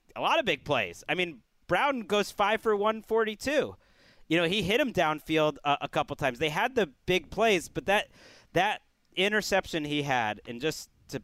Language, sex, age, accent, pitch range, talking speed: English, male, 40-59, American, 135-170 Hz, 190 wpm